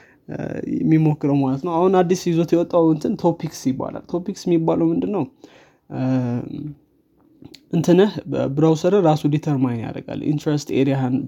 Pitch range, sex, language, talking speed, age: 135-170 Hz, male, Amharic, 105 wpm, 20-39